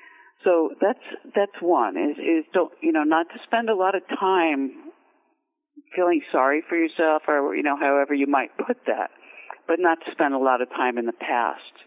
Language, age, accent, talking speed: English, 50-69, American, 195 wpm